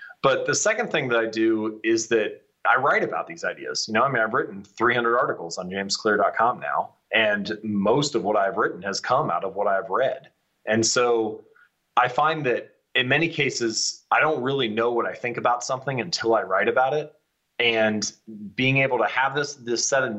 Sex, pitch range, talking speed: male, 105-135 Hz, 205 wpm